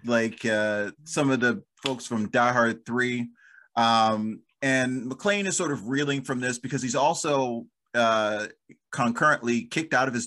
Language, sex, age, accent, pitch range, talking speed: English, male, 30-49, American, 115-135 Hz, 165 wpm